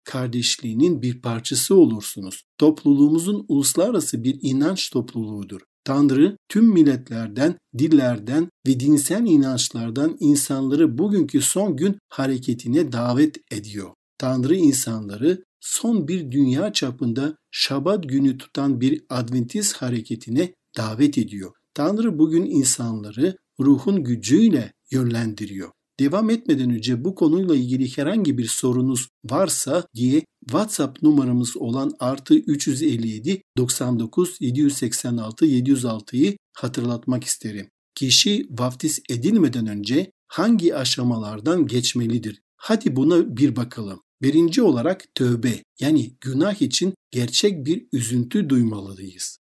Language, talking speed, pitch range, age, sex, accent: Turkish, 100 wpm, 120-160 Hz, 60-79, male, native